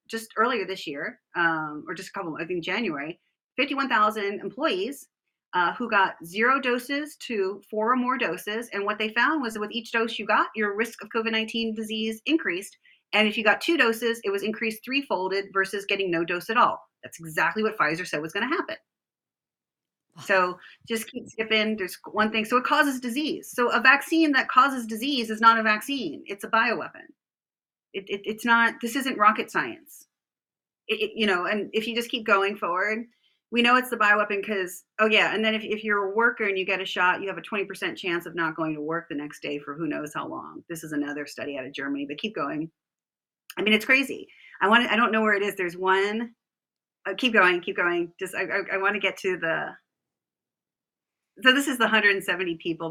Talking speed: 220 wpm